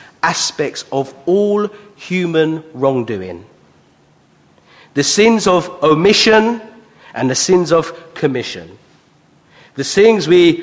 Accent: British